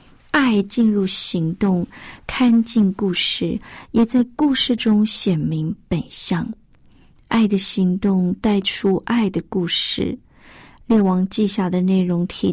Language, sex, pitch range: Chinese, female, 180-225 Hz